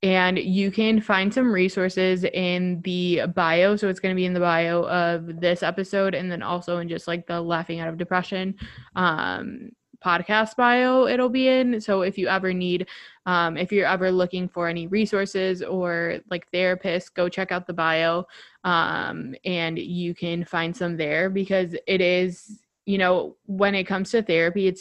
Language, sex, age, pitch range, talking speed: English, female, 20-39, 175-195 Hz, 185 wpm